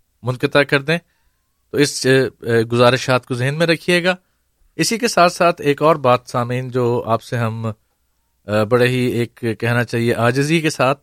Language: Urdu